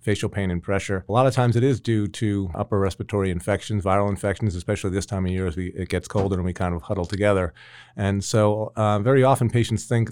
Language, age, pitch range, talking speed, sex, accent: English, 40-59, 90-105 Hz, 235 wpm, male, American